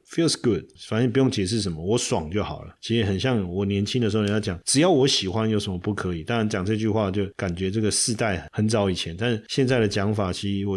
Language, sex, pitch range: Chinese, male, 95-120 Hz